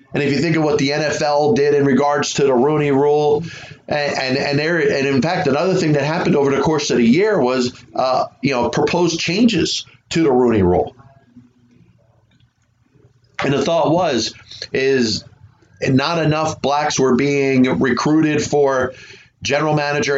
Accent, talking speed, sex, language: American, 165 wpm, male, English